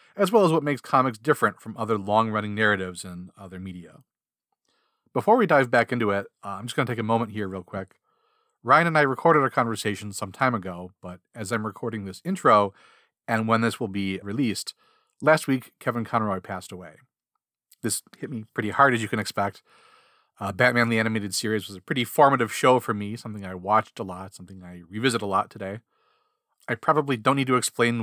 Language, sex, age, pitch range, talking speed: English, male, 40-59, 105-150 Hz, 205 wpm